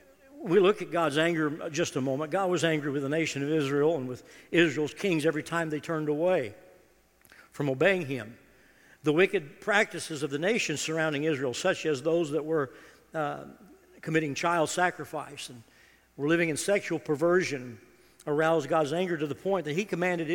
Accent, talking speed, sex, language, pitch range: American, 175 wpm, male, English, 150-185 Hz